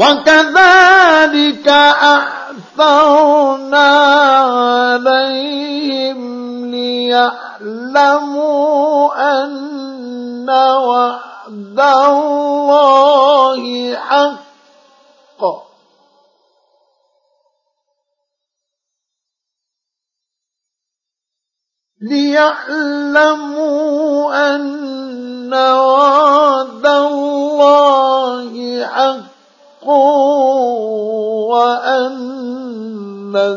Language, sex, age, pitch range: Arabic, male, 50-69, 255-290 Hz